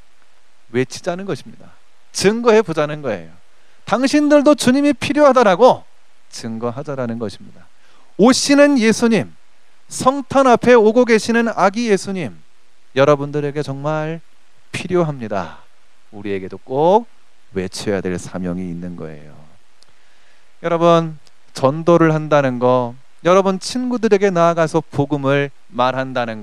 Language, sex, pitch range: Korean, male, 120-200 Hz